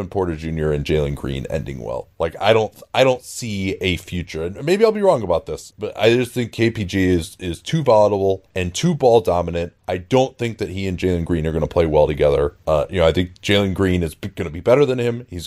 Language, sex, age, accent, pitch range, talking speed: English, male, 30-49, American, 90-115 Hz, 250 wpm